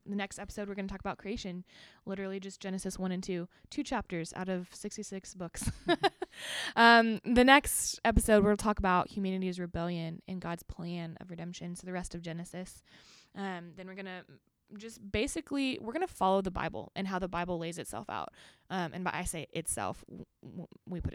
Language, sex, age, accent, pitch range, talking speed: English, female, 20-39, American, 175-205 Hz, 195 wpm